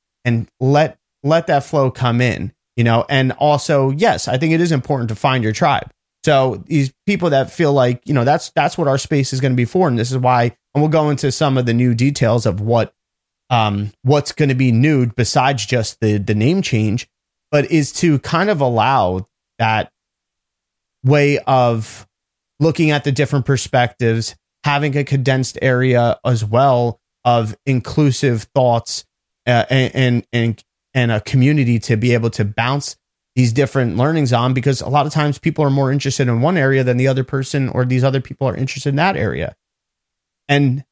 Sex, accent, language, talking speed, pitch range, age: male, American, English, 190 wpm, 120-150 Hz, 30-49